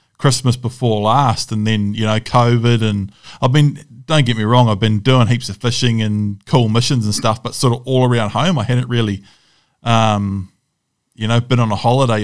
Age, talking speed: 20-39, 205 wpm